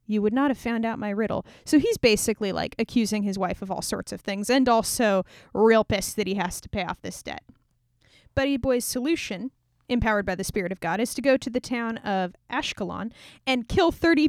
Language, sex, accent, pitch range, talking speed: English, female, American, 205-265 Hz, 220 wpm